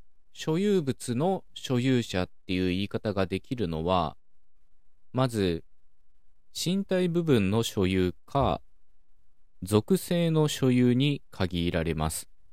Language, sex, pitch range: Japanese, male, 85-130 Hz